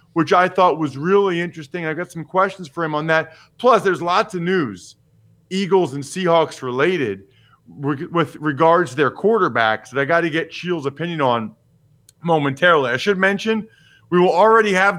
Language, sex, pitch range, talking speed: English, male, 140-180 Hz, 175 wpm